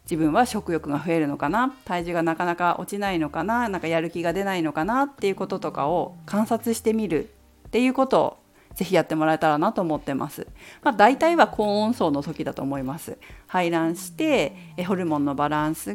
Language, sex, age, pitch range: Japanese, female, 40-59, 165-245 Hz